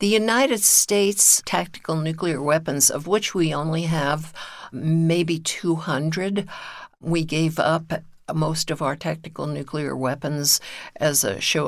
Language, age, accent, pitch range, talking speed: English, 60-79, American, 140-165 Hz, 130 wpm